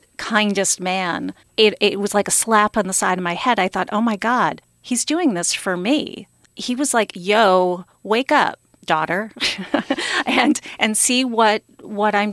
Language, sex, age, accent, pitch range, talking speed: English, female, 40-59, American, 185-230 Hz, 180 wpm